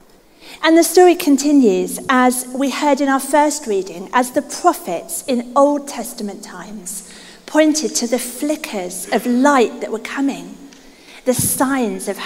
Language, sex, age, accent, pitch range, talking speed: English, female, 40-59, British, 210-270 Hz, 145 wpm